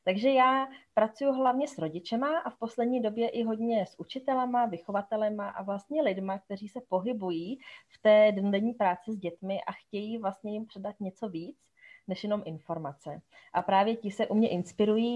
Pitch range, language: 195-245 Hz, Czech